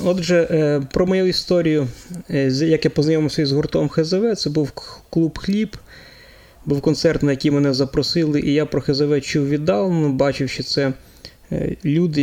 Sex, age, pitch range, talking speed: male, 20-39, 140-170 Hz, 145 wpm